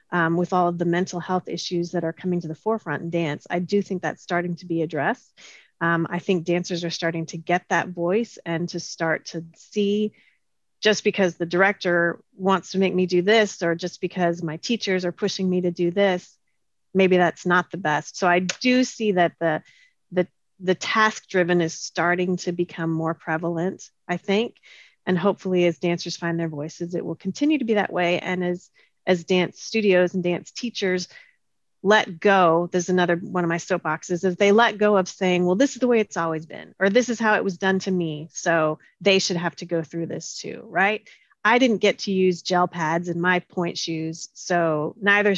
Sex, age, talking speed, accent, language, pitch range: female, 30-49, 210 wpm, American, English, 170-200 Hz